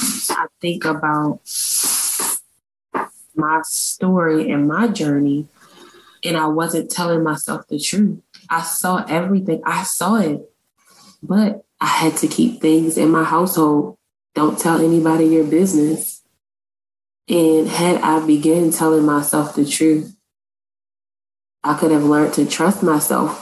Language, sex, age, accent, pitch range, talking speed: English, female, 20-39, American, 155-190 Hz, 130 wpm